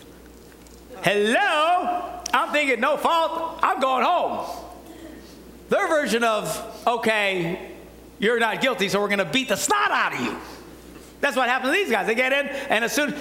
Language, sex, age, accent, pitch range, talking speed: English, male, 60-79, American, 180-280 Hz, 170 wpm